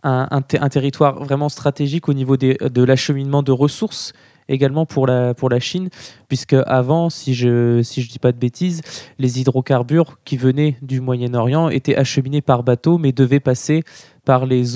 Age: 20-39